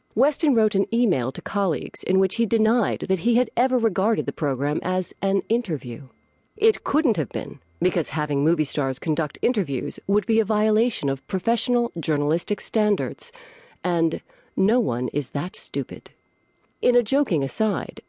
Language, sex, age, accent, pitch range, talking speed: English, female, 40-59, American, 150-230 Hz, 160 wpm